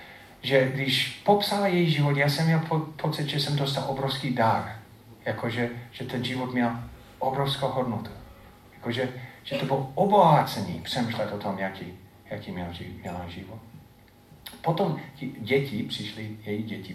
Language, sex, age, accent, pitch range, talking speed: Czech, male, 40-59, native, 115-145 Hz, 125 wpm